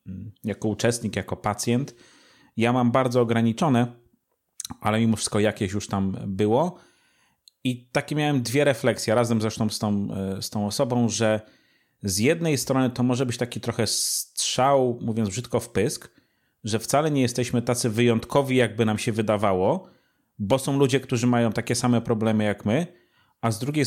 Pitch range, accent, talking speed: 105-125 Hz, native, 160 wpm